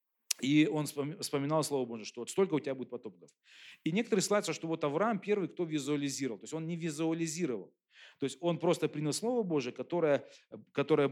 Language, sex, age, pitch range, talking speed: Russian, male, 40-59, 135-170 Hz, 190 wpm